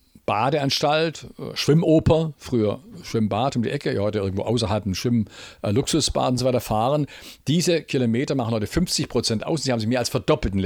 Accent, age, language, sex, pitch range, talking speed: German, 50-69, German, male, 110-155 Hz, 180 wpm